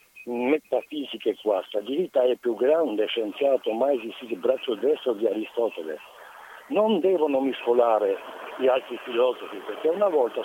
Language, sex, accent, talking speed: Italian, male, native, 130 wpm